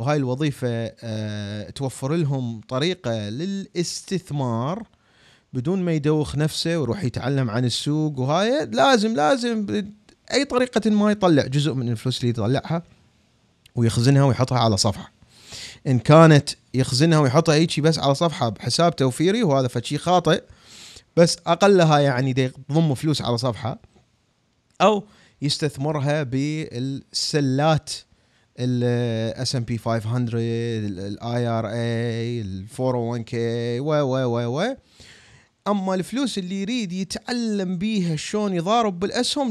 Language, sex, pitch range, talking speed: Arabic, male, 120-175 Hz, 110 wpm